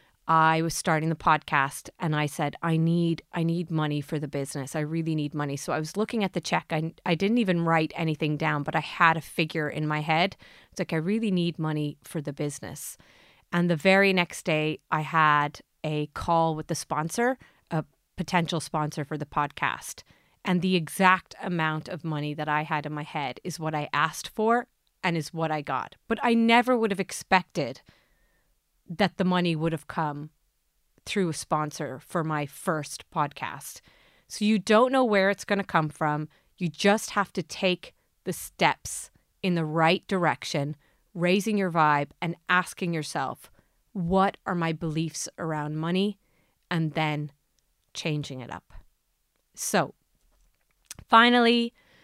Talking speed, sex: 175 wpm, female